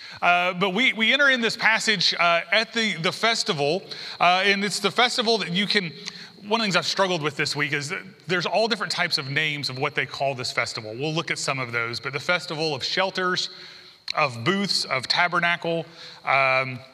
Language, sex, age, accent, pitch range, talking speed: English, male, 30-49, American, 150-195 Hz, 215 wpm